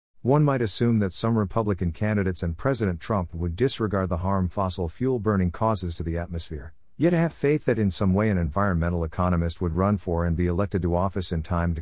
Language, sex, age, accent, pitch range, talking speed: English, male, 50-69, American, 85-110 Hz, 210 wpm